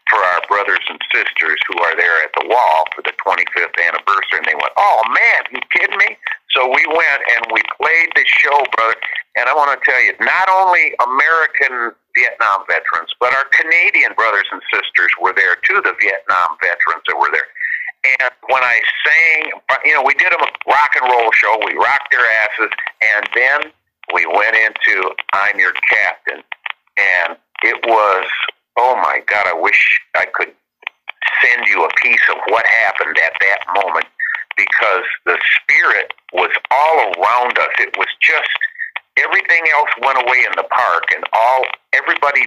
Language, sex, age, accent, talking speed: English, male, 50-69, American, 175 wpm